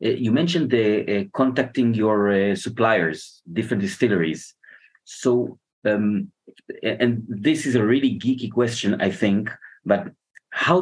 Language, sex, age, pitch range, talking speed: Hebrew, male, 30-49, 100-125 Hz, 130 wpm